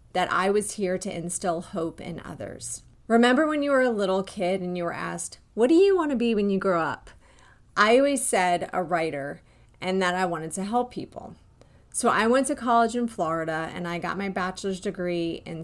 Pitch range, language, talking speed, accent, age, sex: 175-205 Hz, English, 210 wpm, American, 30-49, female